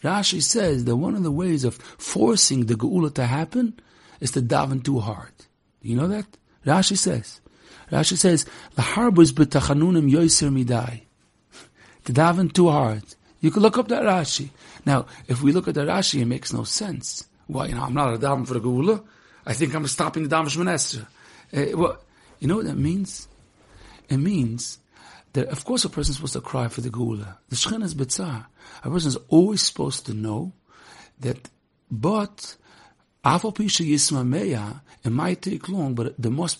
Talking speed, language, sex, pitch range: 175 wpm, English, male, 125-195 Hz